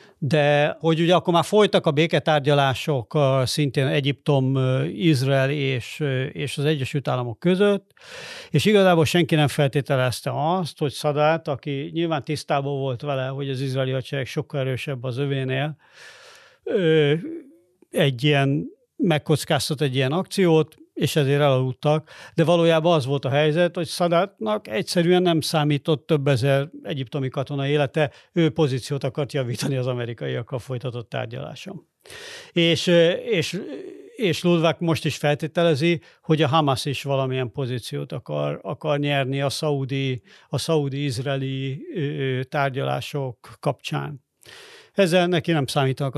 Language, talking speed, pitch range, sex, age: Hungarian, 125 wpm, 135-165 Hz, male, 50-69